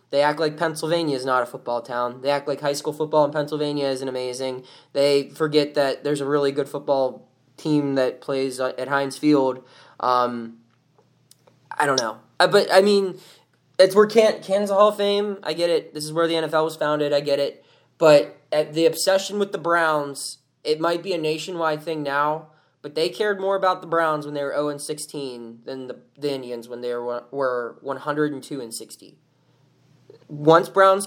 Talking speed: 185 wpm